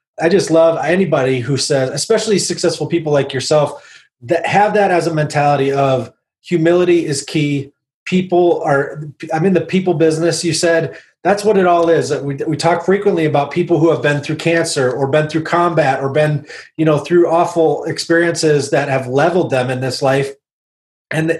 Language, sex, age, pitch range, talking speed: English, male, 30-49, 150-175 Hz, 180 wpm